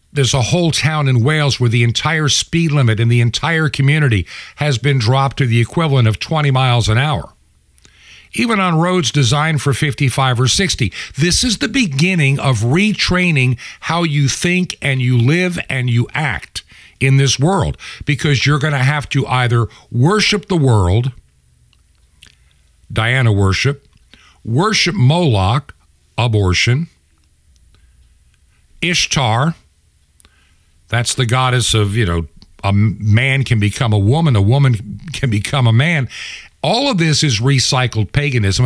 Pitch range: 100-150 Hz